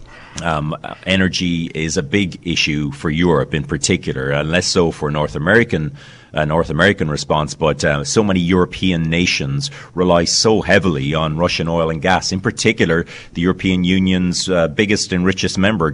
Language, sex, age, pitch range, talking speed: English, male, 30-49, 80-100 Hz, 165 wpm